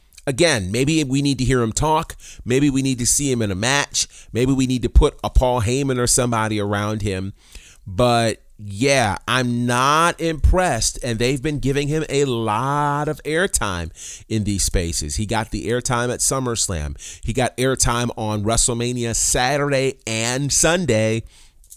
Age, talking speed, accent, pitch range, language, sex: 40-59, 165 wpm, American, 95-135 Hz, English, male